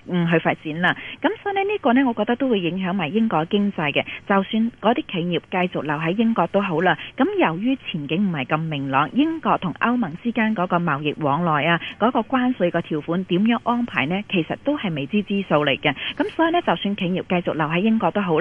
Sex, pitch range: female, 165-235 Hz